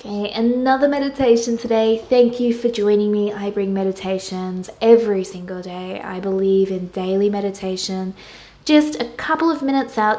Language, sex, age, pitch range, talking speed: English, female, 20-39, 190-235 Hz, 155 wpm